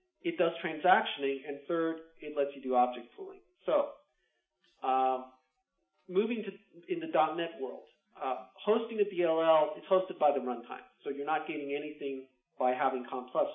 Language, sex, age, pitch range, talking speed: English, male, 40-59, 130-185 Hz, 160 wpm